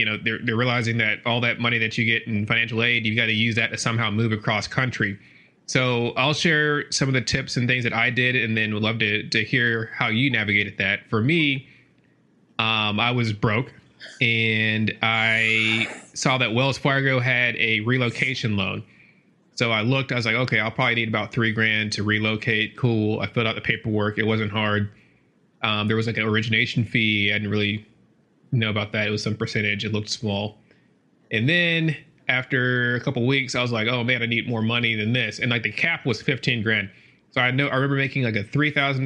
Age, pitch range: 30-49, 110-130 Hz